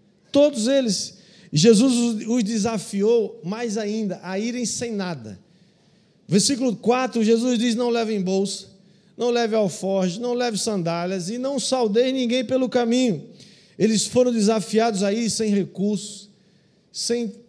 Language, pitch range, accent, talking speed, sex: Portuguese, 165-215 Hz, Brazilian, 125 wpm, male